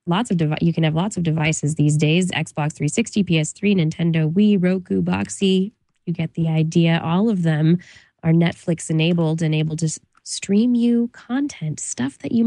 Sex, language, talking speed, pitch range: female, English, 175 wpm, 160-215 Hz